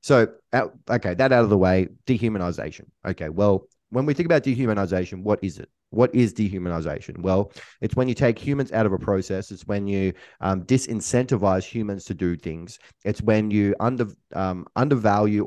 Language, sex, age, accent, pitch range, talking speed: English, male, 20-39, Australian, 95-115 Hz, 180 wpm